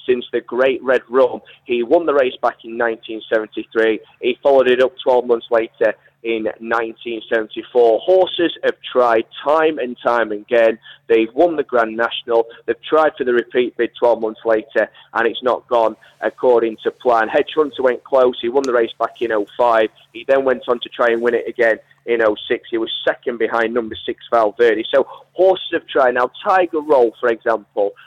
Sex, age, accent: male, 30-49, British